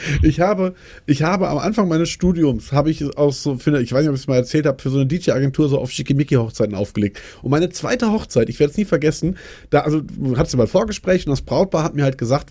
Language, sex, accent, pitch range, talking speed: German, male, German, 140-185 Hz, 255 wpm